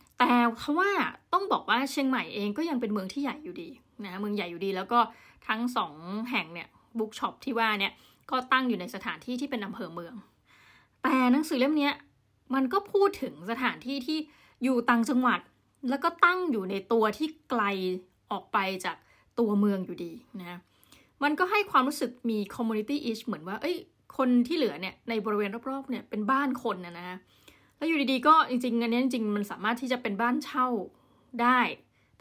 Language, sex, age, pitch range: Thai, female, 20-39, 205-260 Hz